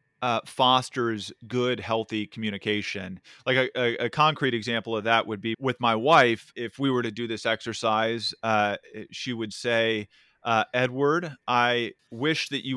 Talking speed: 165 wpm